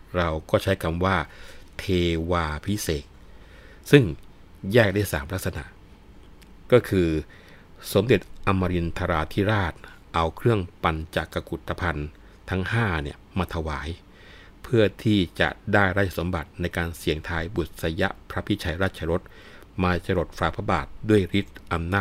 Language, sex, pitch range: Thai, male, 80-100 Hz